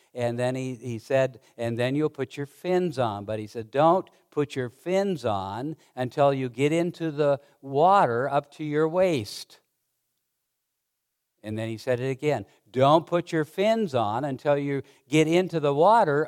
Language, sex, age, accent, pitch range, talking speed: English, male, 60-79, American, 140-195 Hz, 175 wpm